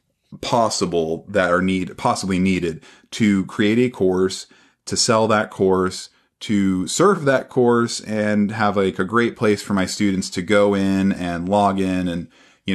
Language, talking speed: English, 165 wpm